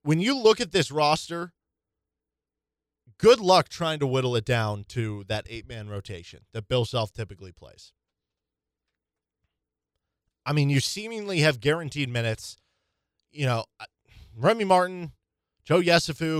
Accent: American